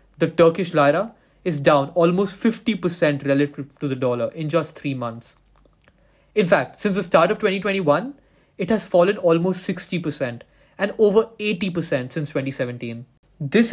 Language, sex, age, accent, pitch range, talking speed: English, male, 20-39, Indian, 145-195 Hz, 145 wpm